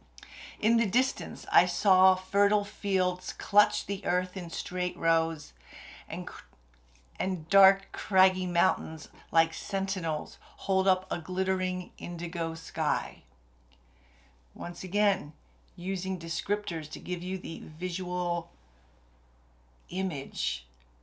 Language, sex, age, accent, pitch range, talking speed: English, female, 50-69, American, 160-195 Hz, 105 wpm